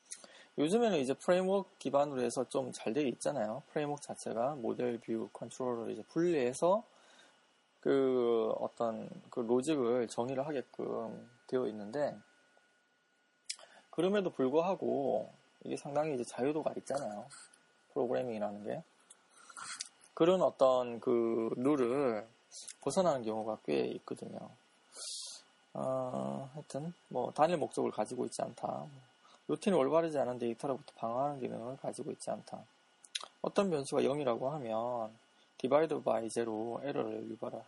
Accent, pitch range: Korean, 110-145 Hz